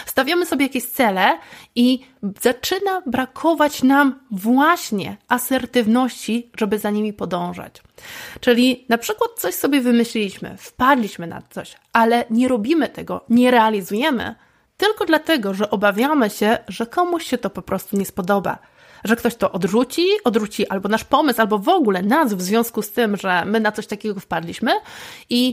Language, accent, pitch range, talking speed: Polish, native, 215-270 Hz, 155 wpm